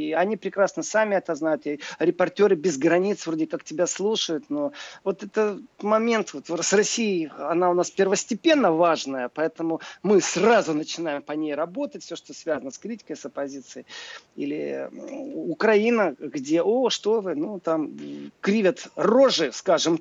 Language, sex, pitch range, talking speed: Russian, male, 150-215 Hz, 145 wpm